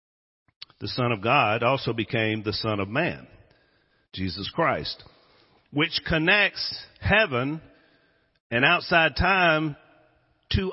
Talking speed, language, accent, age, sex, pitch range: 105 wpm, English, American, 50-69, male, 105-160 Hz